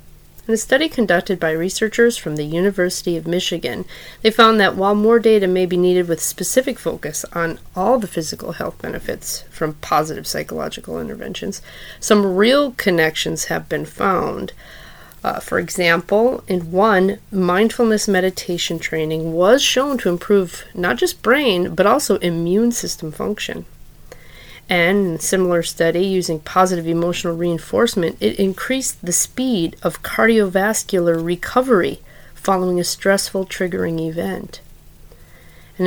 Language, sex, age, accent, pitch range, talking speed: English, female, 30-49, American, 175-220 Hz, 135 wpm